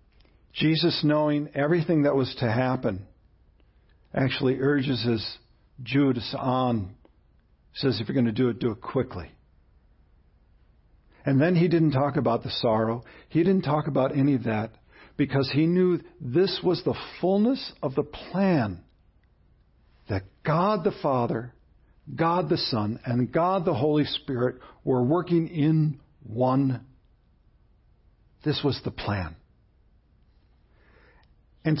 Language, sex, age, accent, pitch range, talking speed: English, male, 50-69, American, 115-175 Hz, 130 wpm